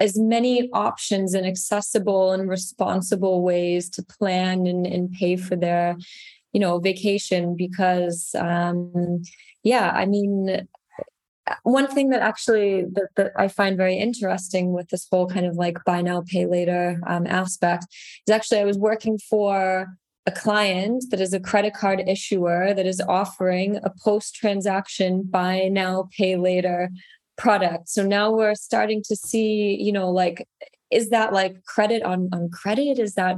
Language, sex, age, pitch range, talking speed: English, female, 20-39, 180-215 Hz, 155 wpm